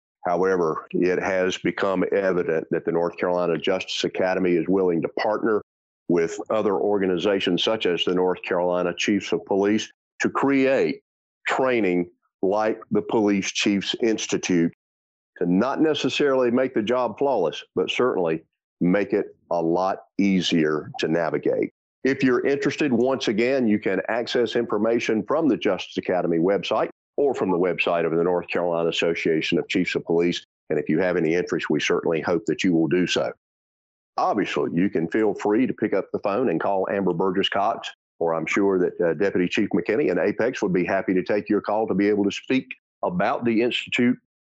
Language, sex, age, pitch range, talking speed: English, male, 40-59, 90-110 Hz, 175 wpm